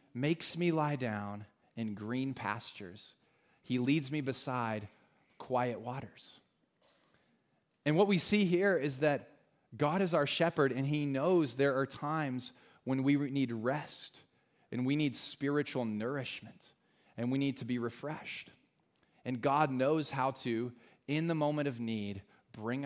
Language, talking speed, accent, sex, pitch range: English, 145 wpm, American, male, 130-170 Hz